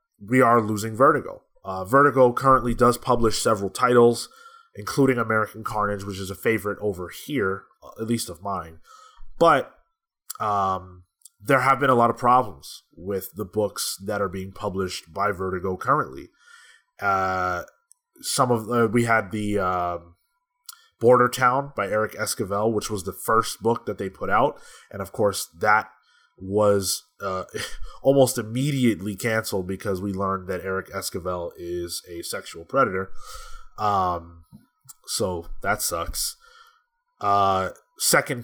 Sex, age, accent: male, 20-39, American